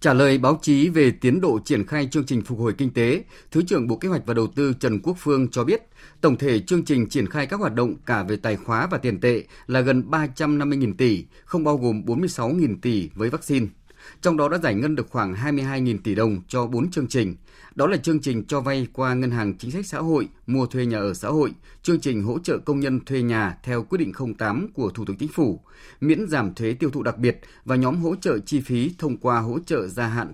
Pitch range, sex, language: 120-150 Hz, male, Vietnamese